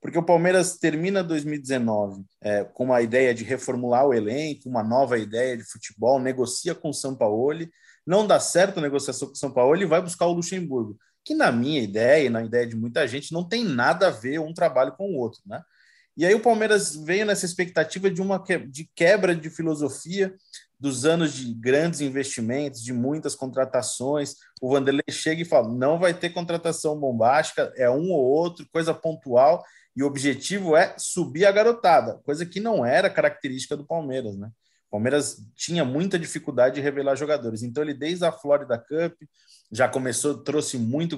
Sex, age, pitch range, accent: male, 30-49, 130-175 Hz, Brazilian